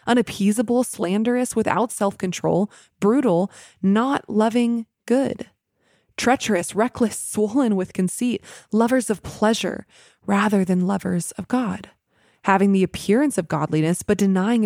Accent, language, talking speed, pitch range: American, English, 110 wpm, 185-220 Hz